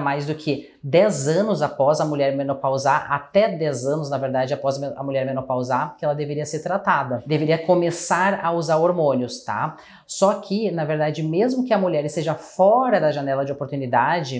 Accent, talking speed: Brazilian, 180 wpm